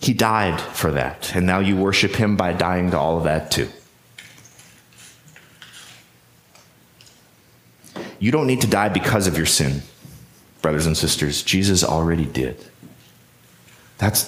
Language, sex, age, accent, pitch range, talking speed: English, male, 30-49, American, 90-130 Hz, 135 wpm